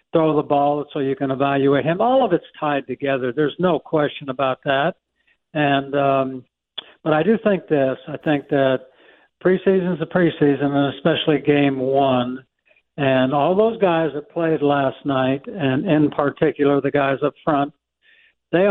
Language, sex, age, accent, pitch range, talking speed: English, male, 60-79, American, 140-165 Hz, 165 wpm